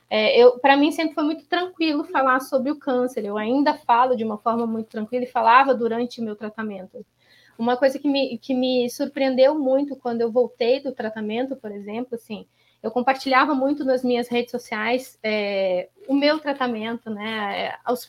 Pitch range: 230-275 Hz